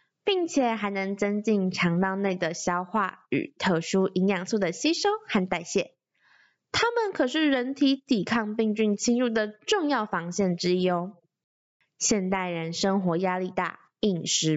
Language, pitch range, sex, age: Chinese, 185-270 Hz, female, 20-39